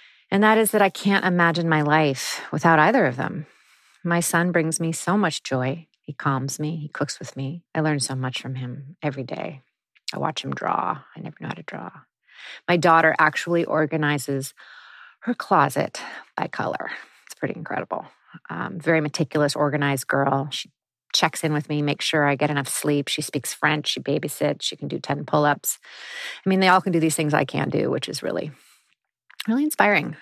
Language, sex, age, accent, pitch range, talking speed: English, female, 30-49, American, 150-180 Hz, 195 wpm